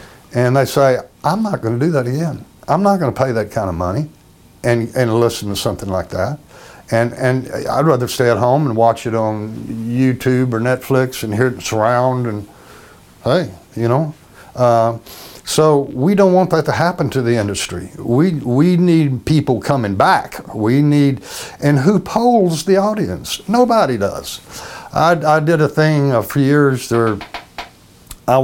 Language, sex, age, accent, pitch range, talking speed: English, male, 60-79, American, 110-145 Hz, 175 wpm